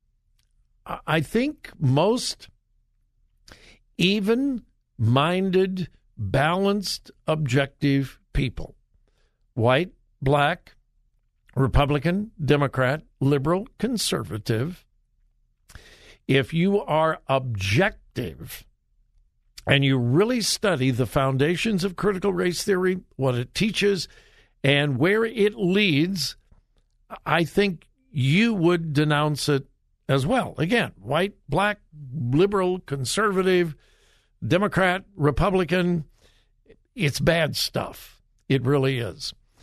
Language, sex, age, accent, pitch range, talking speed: English, male, 60-79, American, 135-190 Hz, 85 wpm